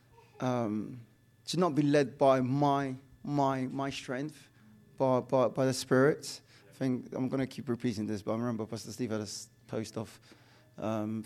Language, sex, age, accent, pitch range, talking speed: English, male, 20-39, British, 120-140 Hz, 175 wpm